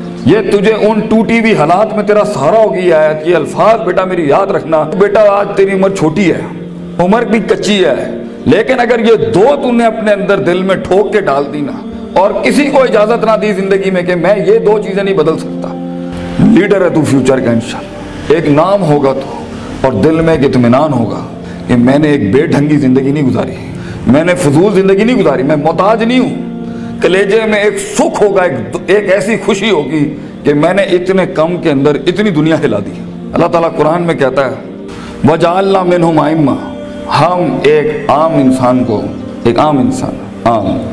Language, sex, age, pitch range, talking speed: Urdu, male, 50-69, 135-205 Hz, 190 wpm